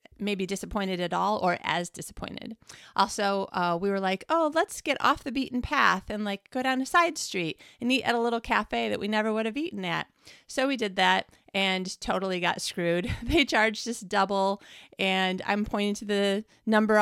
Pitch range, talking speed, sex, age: 185-230 Hz, 200 wpm, female, 30-49